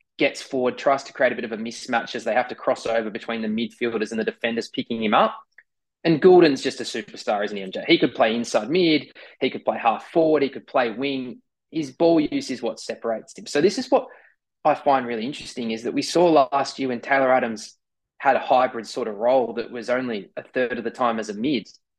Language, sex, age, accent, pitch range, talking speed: English, male, 20-39, Australian, 120-155 Hz, 240 wpm